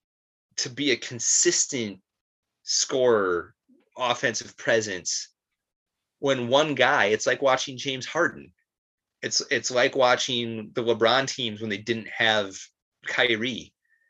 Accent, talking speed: American, 115 wpm